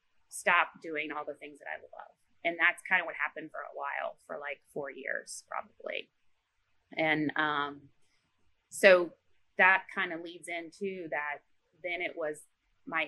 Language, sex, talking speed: English, female, 160 wpm